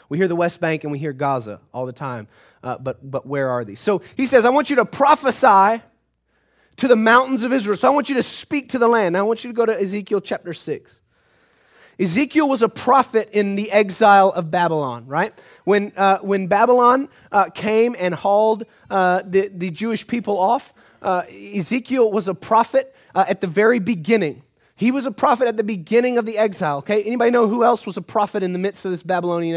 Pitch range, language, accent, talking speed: 155-225 Hz, English, American, 220 wpm